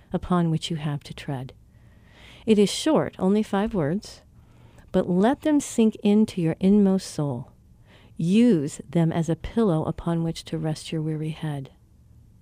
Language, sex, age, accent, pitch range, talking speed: English, female, 50-69, American, 160-220 Hz, 155 wpm